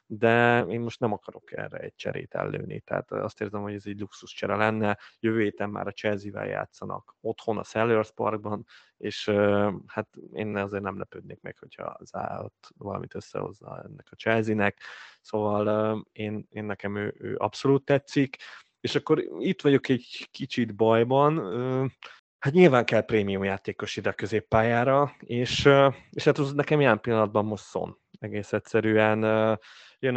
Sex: male